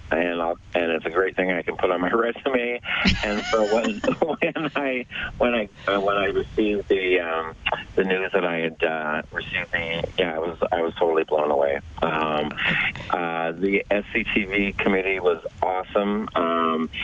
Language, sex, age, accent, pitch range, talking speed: English, male, 30-49, American, 85-105 Hz, 175 wpm